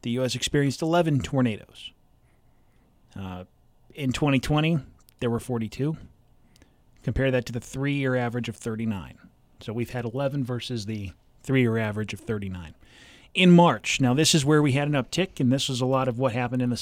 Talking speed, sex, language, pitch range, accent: 175 wpm, male, English, 115-145 Hz, American